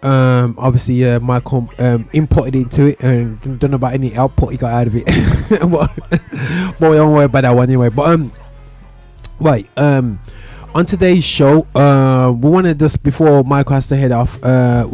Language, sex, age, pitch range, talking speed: English, male, 20-39, 130-170 Hz, 185 wpm